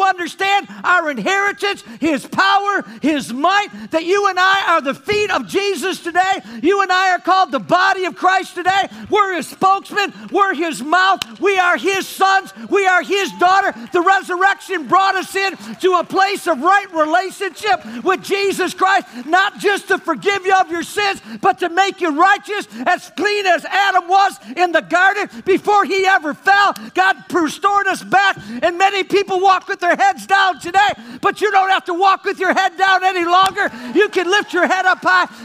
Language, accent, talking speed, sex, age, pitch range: English, American, 190 wpm, male, 50-69, 345-390 Hz